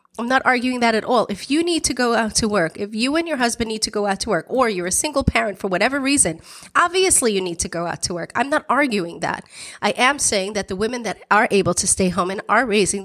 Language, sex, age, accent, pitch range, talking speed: English, female, 30-49, American, 205-280 Hz, 275 wpm